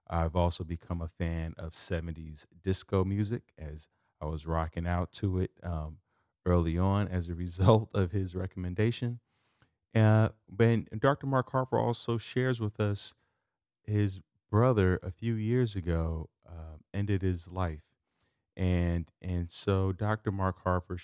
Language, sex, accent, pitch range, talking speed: English, male, American, 85-105 Hz, 145 wpm